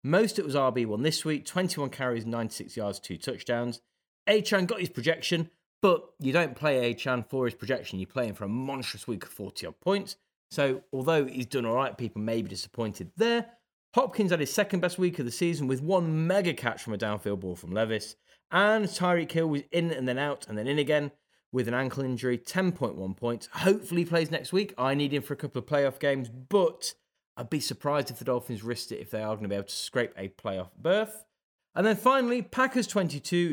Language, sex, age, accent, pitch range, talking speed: English, male, 30-49, British, 120-190 Hz, 220 wpm